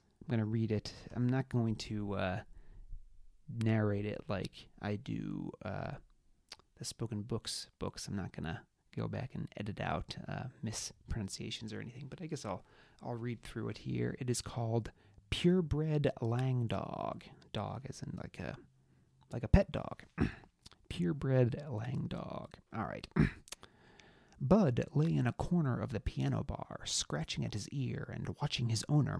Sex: male